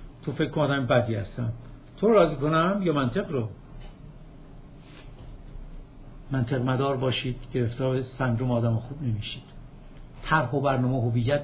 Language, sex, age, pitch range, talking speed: Persian, male, 60-79, 120-140 Hz, 125 wpm